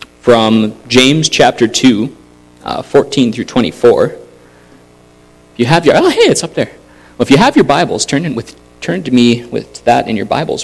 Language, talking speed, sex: English, 170 wpm, male